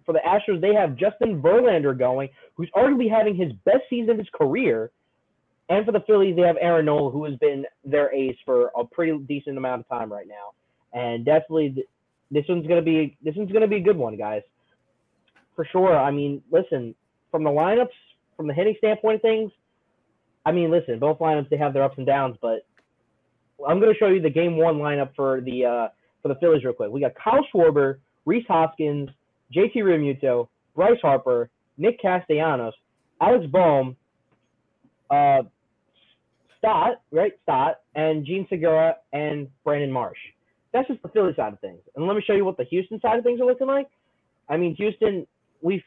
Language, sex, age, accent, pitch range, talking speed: English, male, 20-39, American, 130-195 Hz, 190 wpm